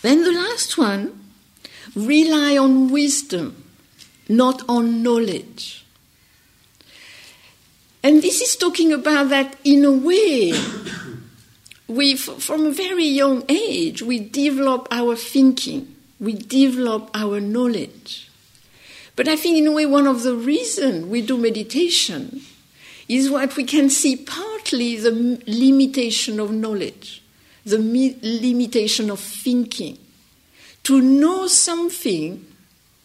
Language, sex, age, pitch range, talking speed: English, female, 60-79, 215-280 Hz, 115 wpm